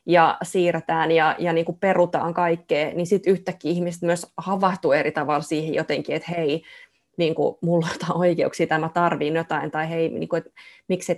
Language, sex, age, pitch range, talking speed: Finnish, female, 20-39, 160-175 Hz, 185 wpm